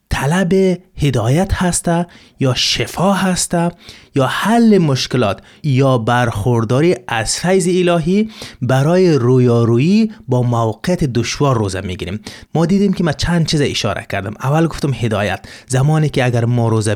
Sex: male